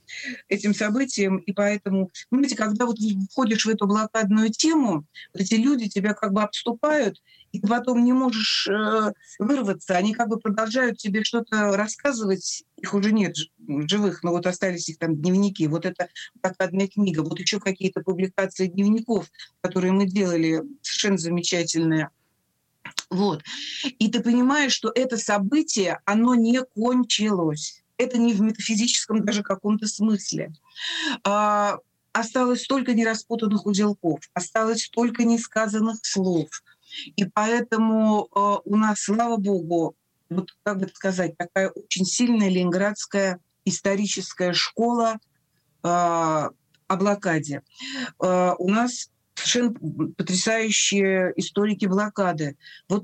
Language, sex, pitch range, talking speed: Russian, female, 185-225 Hz, 120 wpm